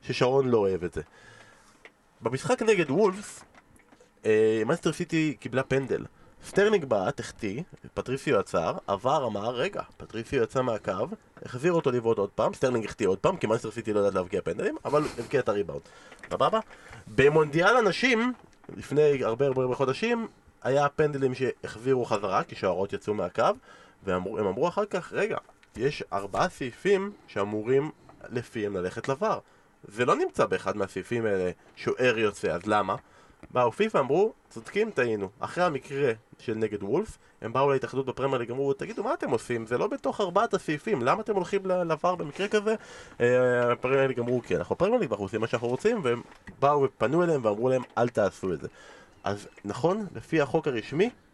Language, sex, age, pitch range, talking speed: Hebrew, male, 20-39, 120-195 Hz, 160 wpm